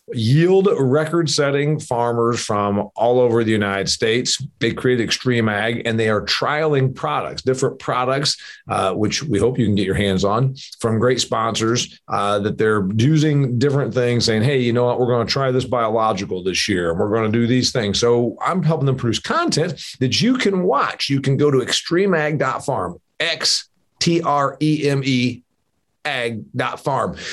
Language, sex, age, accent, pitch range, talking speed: English, male, 40-59, American, 115-150 Hz, 180 wpm